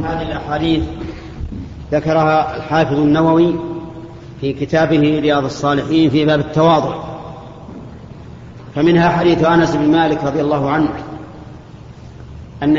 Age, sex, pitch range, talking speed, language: 40-59, male, 150-170 Hz, 100 wpm, Arabic